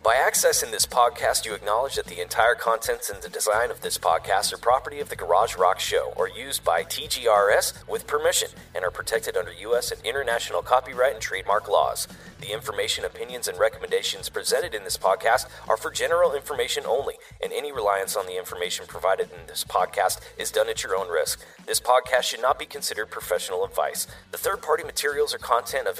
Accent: American